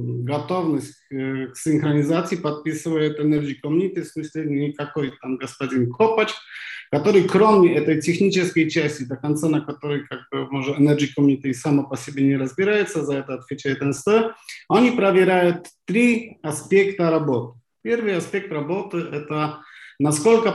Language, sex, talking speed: Ukrainian, male, 125 wpm